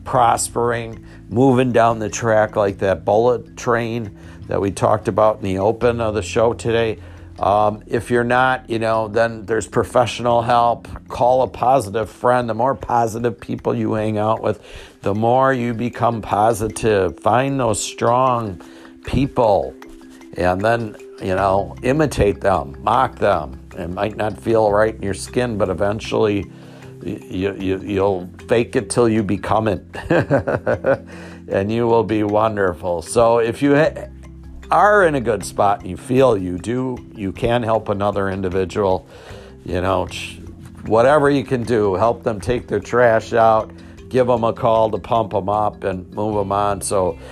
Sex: male